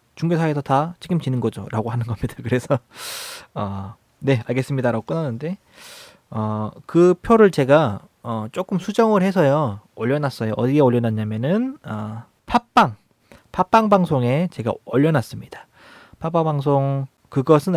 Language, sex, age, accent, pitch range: Korean, male, 20-39, native, 115-160 Hz